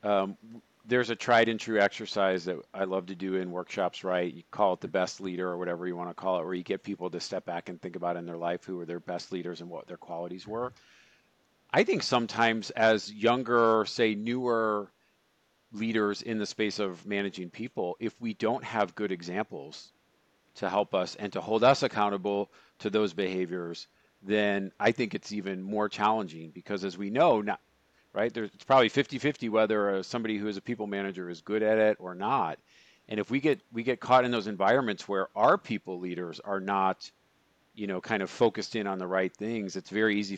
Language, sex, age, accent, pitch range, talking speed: English, male, 40-59, American, 95-110 Hz, 210 wpm